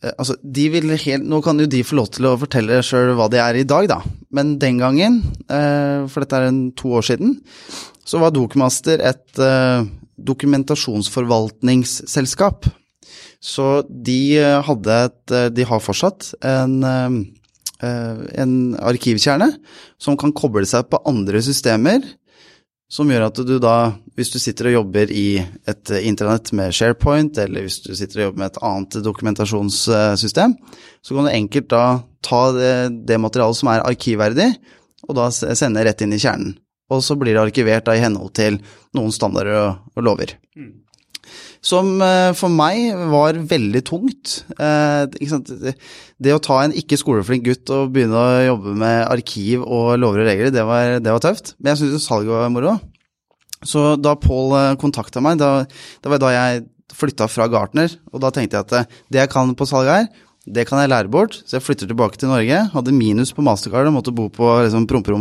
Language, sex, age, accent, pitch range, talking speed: English, male, 20-39, Norwegian, 115-145 Hz, 165 wpm